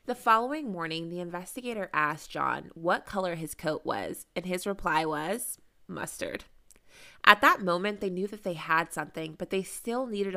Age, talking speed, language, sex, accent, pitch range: 20-39, 175 wpm, English, female, American, 155-205 Hz